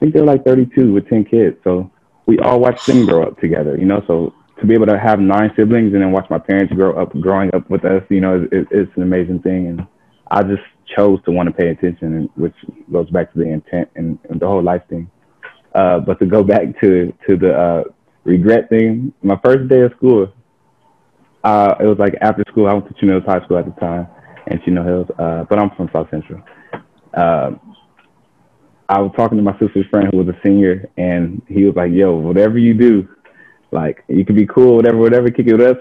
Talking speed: 230 wpm